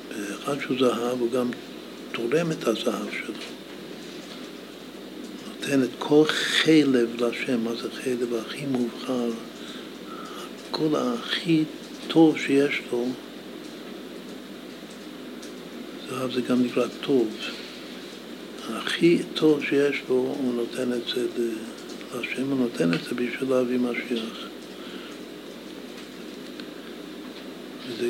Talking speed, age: 100 wpm, 60-79